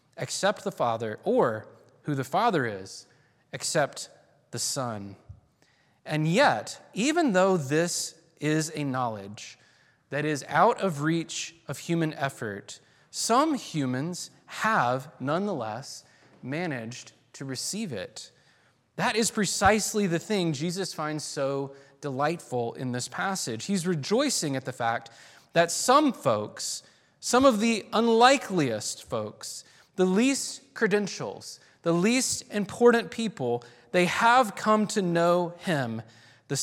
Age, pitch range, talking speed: 20-39, 120-185 Hz, 120 wpm